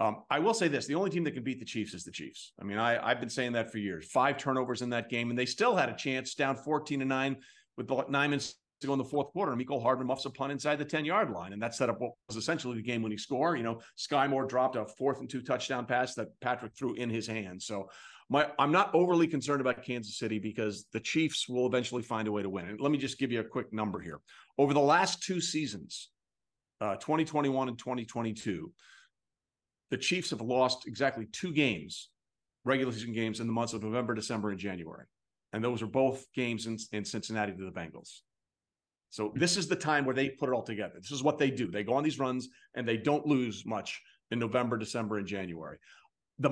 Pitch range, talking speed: 110-145 Hz, 240 wpm